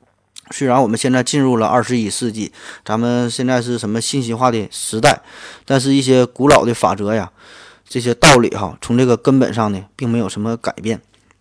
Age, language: 20-39, Chinese